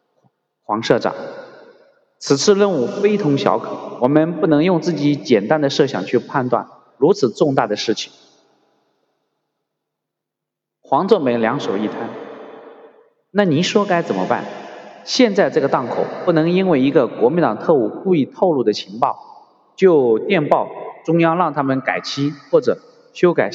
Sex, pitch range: male, 155-235 Hz